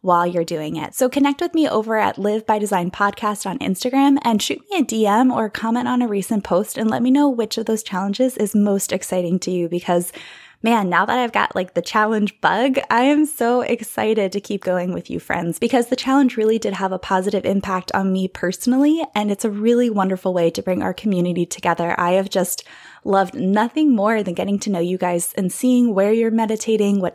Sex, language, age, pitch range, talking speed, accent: female, English, 20-39, 180-235 Hz, 225 wpm, American